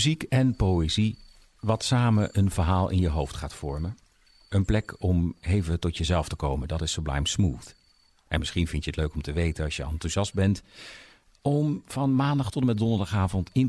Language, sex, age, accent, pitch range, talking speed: Dutch, male, 50-69, Dutch, 80-105 Hz, 195 wpm